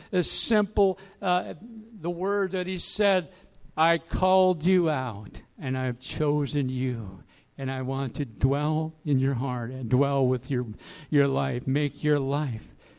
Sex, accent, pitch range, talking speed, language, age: male, American, 130-165 Hz, 150 wpm, English, 60-79